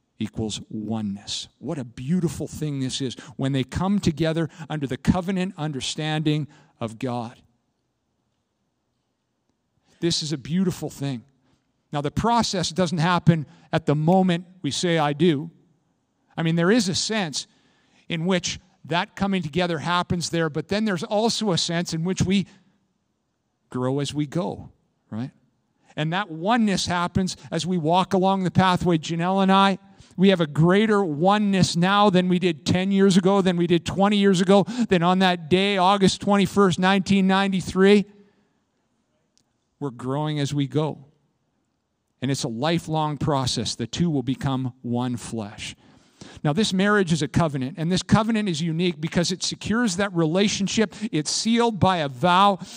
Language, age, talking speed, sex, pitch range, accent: English, 50-69, 155 wpm, male, 150-195 Hz, American